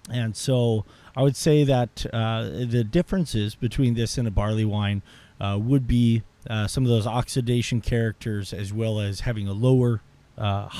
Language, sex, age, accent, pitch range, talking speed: English, male, 30-49, American, 105-125 Hz, 170 wpm